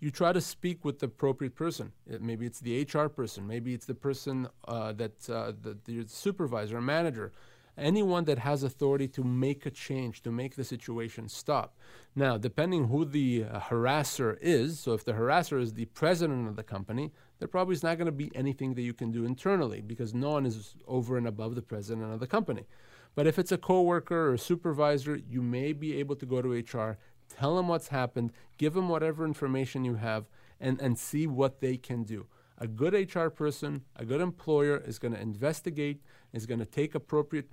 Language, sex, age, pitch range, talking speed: English, male, 40-59, 115-150 Hz, 205 wpm